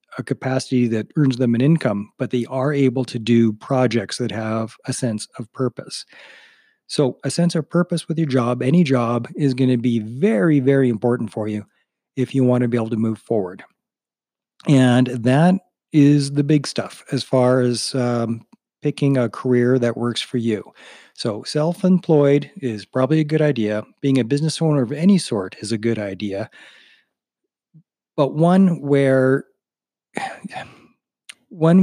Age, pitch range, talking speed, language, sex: 40-59, 120-150 Hz, 165 wpm, English, male